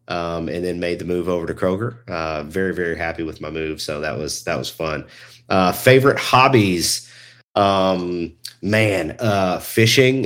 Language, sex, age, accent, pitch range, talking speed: English, male, 30-49, American, 80-115 Hz, 170 wpm